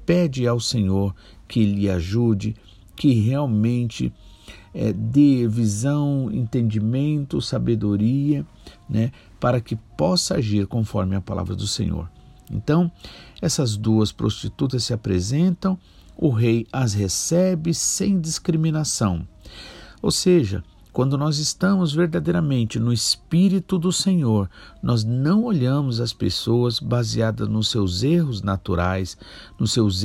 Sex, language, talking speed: male, Portuguese, 110 wpm